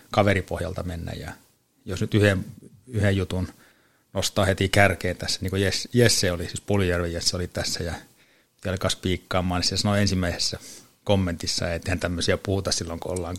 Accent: native